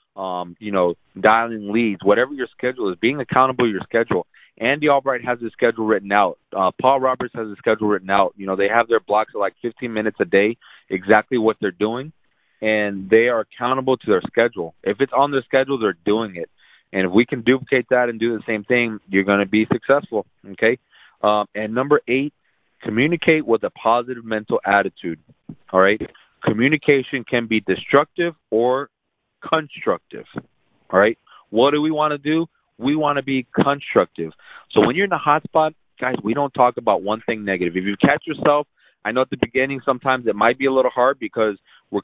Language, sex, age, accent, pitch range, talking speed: English, male, 30-49, American, 105-130 Hz, 200 wpm